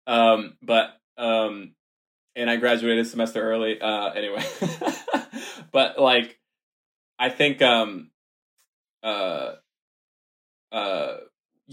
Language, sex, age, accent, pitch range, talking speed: English, male, 20-39, American, 105-125 Hz, 85 wpm